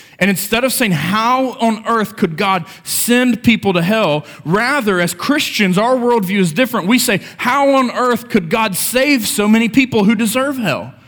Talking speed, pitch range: 185 wpm, 150-220 Hz